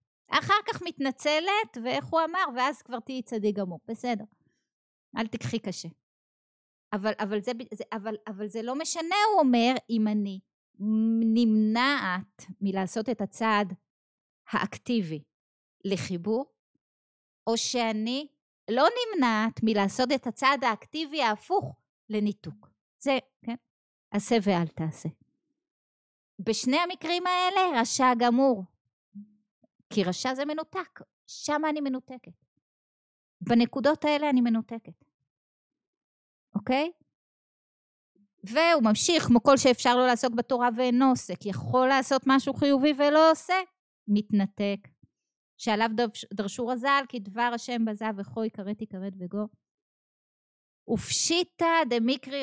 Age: 20-39